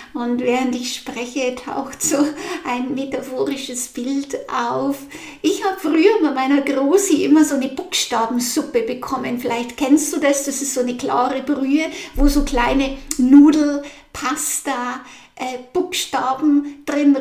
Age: 60-79